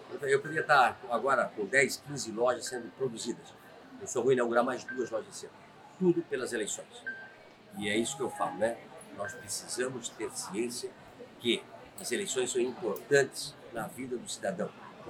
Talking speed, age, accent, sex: 165 wpm, 50-69, Brazilian, male